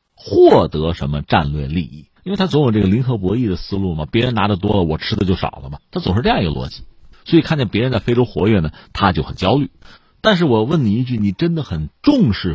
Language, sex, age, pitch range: Chinese, male, 50-69, 90-140 Hz